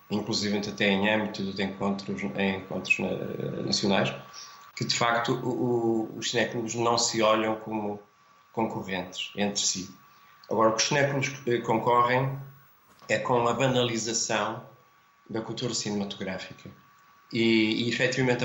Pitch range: 110-120 Hz